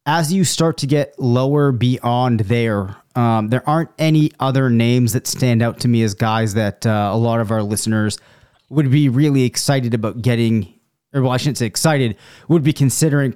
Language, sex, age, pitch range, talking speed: English, male, 30-49, 115-145 Hz, 190 wpm